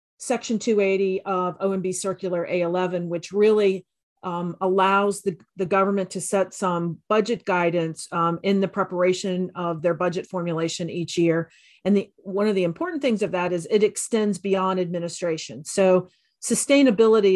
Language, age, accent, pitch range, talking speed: English, 40-59, American, 175-200 Hz, 150 wpm